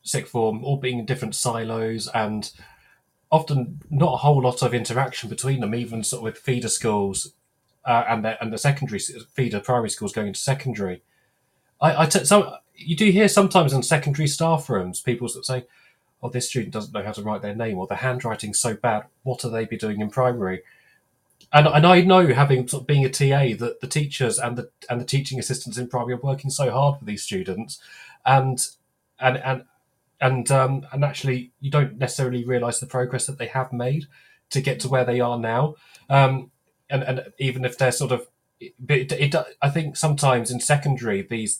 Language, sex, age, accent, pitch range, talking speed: English, male, 30-49, British, 115-135 Hz, 205 wpm